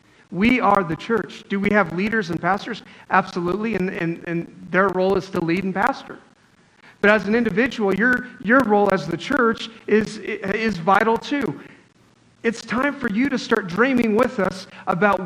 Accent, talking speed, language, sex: American, 175 wpm, English, male